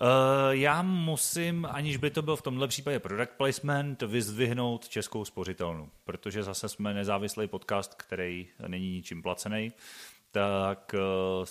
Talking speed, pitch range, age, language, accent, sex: 135 wpm, 100-125 Hz, 30-49, Czech, native, male